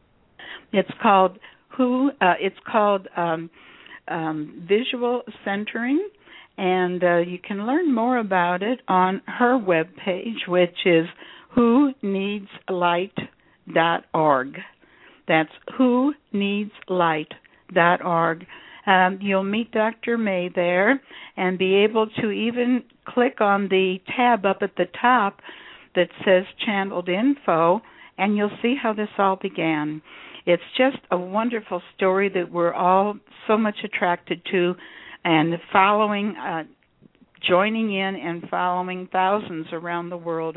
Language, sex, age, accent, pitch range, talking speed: English, female, 60-79, American, 180-225 Hz, 130 wpm